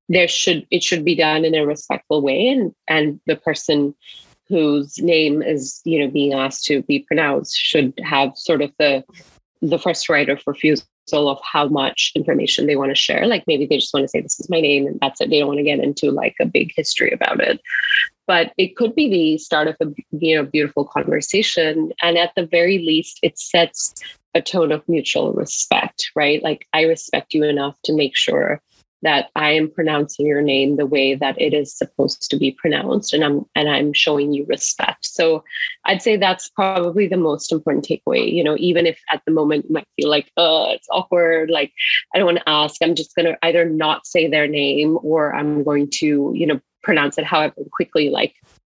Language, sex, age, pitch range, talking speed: English, female, 30-49, 145-170 Hz, 210 wpm